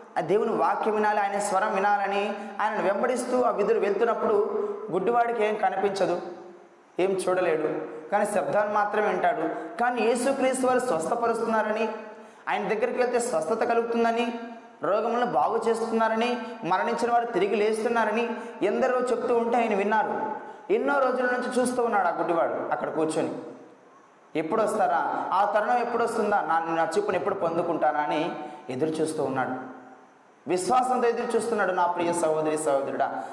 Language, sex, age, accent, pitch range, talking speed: Telugu, male, 20-39, native, 170-235 Hz, 125 wpm